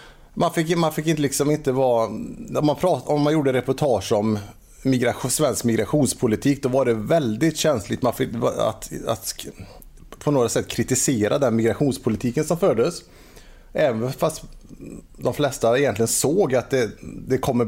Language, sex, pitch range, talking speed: Swedish, male, 115-145 Hz, 165 wpm